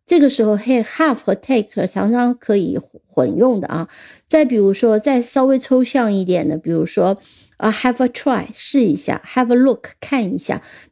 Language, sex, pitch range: Chinese, female, 210-265 Hz